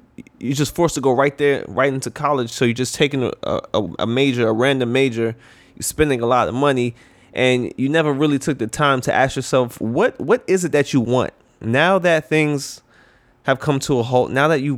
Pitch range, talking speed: 120-145 Hz, 225 wpm